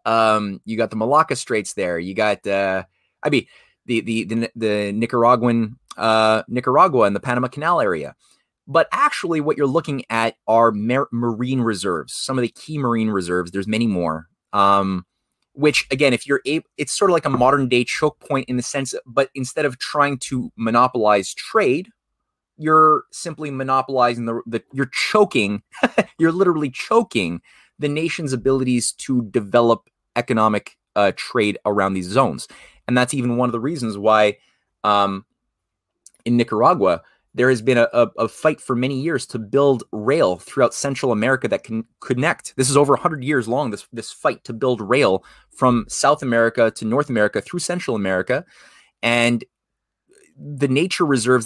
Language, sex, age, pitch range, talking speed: English, male, 30-49, 110-140 Hz, 170 wpm